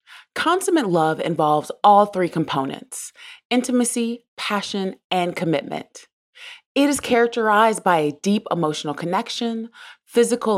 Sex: female